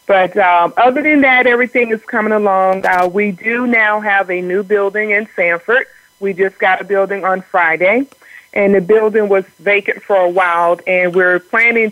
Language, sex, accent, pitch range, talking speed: English, female, American, 180-220 Hz, 185 wpm